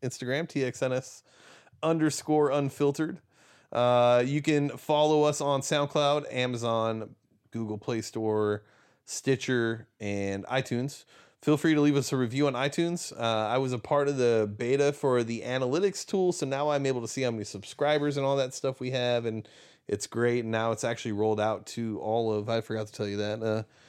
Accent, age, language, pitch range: American, 30-49, English, 110-145 Hz